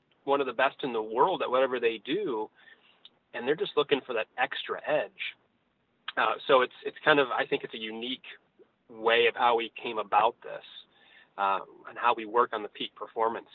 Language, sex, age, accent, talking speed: English, male, 30-49, American, 205 wpm